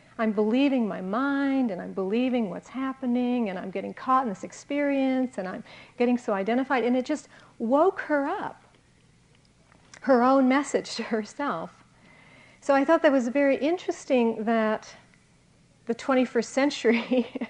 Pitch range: 215-275 Hz